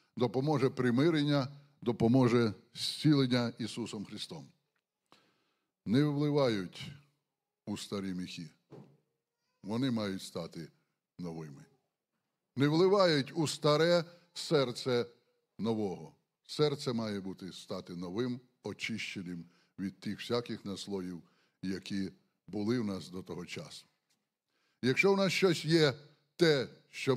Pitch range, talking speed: 110-150 Hz, 100 wpm